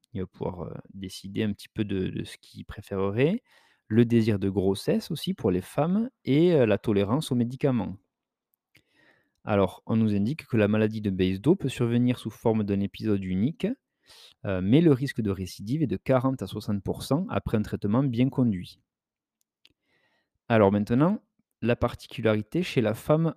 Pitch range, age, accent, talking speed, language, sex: 100-130 Hz, 30-49, French, 160 wpm, French, male